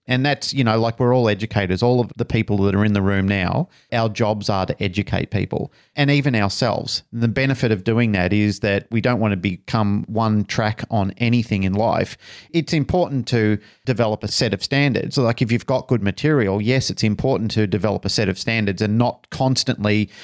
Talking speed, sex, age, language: 210 wpm, male, 40-59, English